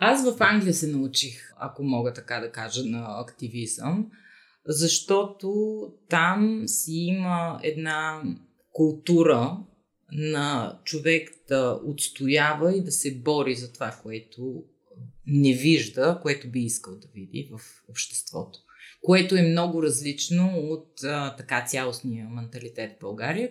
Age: 30-49